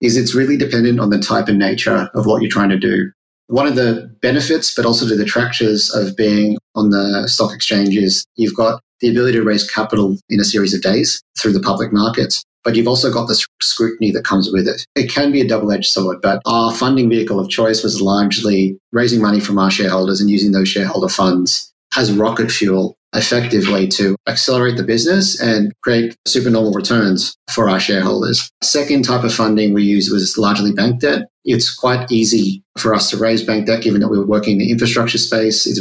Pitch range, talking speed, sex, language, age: 100-120 Hz, 210 wpm, male, English, 40-59